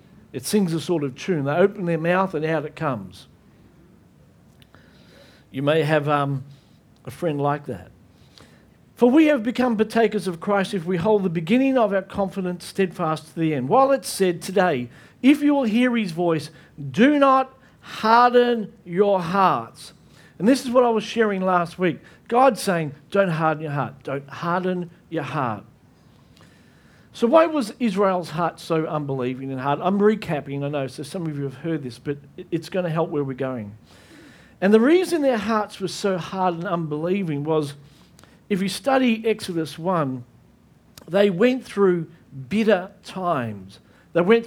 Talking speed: 170 wpm